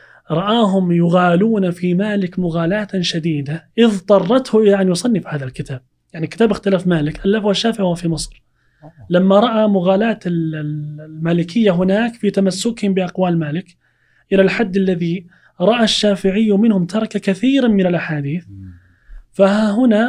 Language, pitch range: Arabic, 160-205 Hz